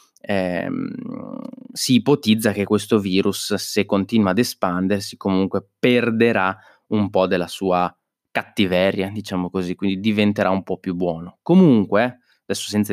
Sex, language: male, Italian